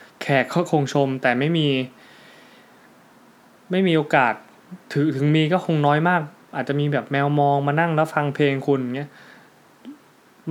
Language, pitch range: Thai, 125-155 Hz